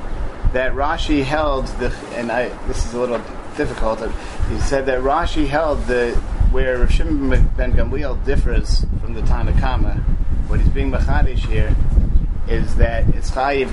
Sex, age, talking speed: male, 30-49, 155 wpm